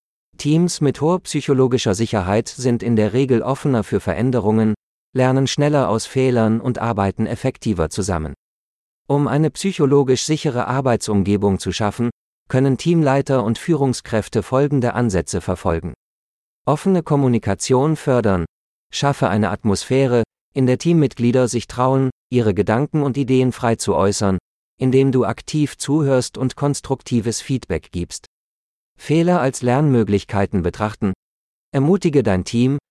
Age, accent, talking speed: 40-59, German, 120 wpm